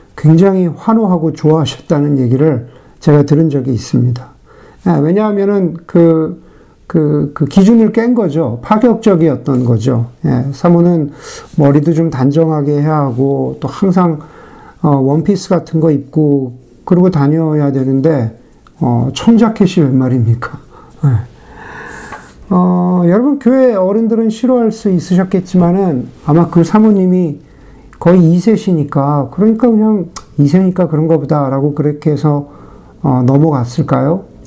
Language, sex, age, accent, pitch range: Korean, male, 50-69, native, 140-185 Hz